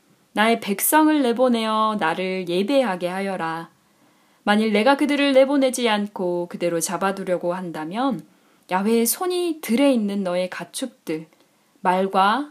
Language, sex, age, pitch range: Korean, female, 10-29, 180-255 Hz